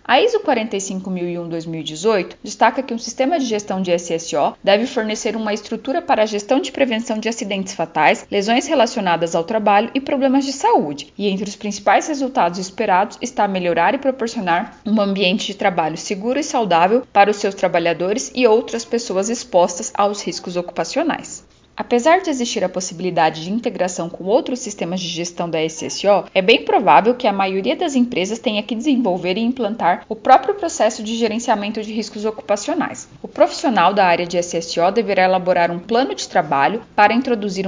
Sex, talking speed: female, 170 wpm